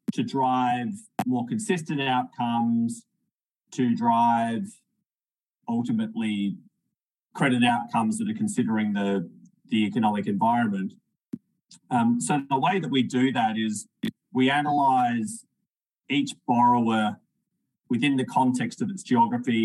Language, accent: English, Australian